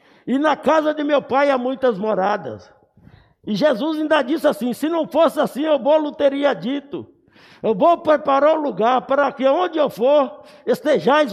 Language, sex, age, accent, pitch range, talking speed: Portuguese, male, 60-79, Brazilian, 265-310 Hz, 180 wpm